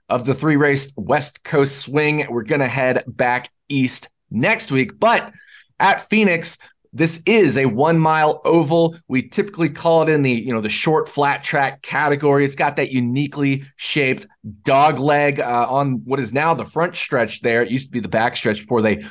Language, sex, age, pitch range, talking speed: English, male, 20-39, 120-150 Hz, 190 wpm